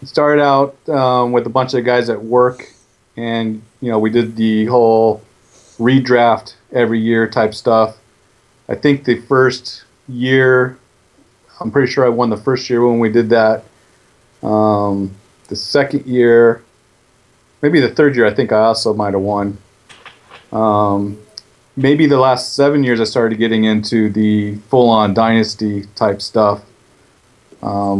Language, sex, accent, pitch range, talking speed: English, male, American, 110-125 Hz, 150 wpm